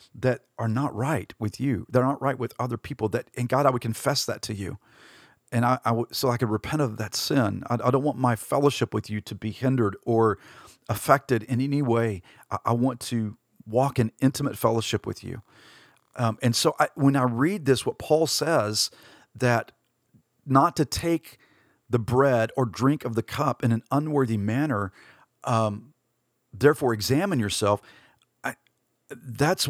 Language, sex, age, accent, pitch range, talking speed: English, male, 40-59, American, 110-130 Hz, 180 wpm